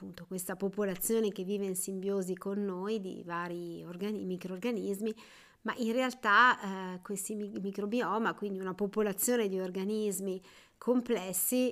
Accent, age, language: native, 50-69, Italian